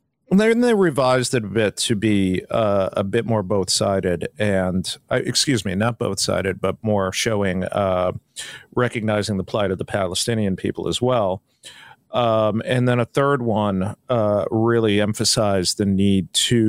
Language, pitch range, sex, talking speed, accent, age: English, 100-120 Hz, male, 170 wpm, American, 40-59